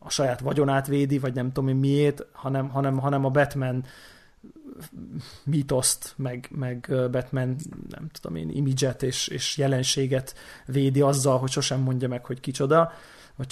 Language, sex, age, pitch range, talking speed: Hungarian, male, 30-49, 130-145 Hz, 145 wpm